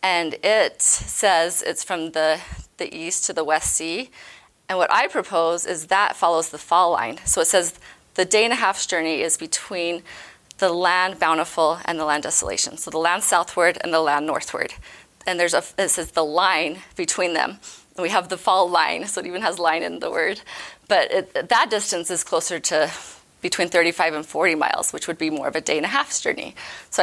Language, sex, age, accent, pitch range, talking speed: English, female, 30-49, American, 160-190 Hz, 210 wpm